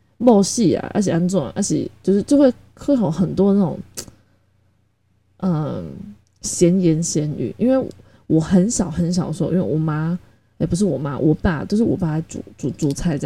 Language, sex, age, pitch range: Chinese, female, 20-39, 150-195 Hz